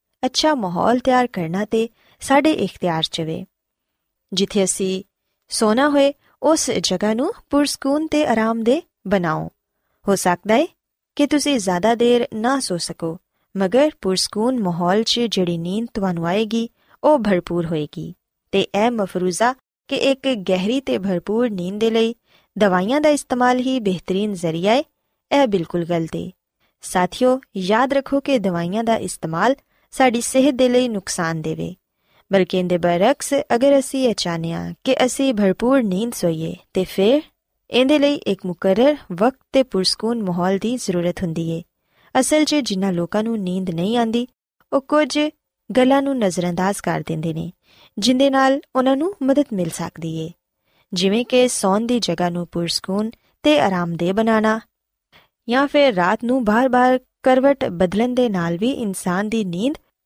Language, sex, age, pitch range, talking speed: Punjabi, female, 20-39, 185-260 Hz, 125 wpm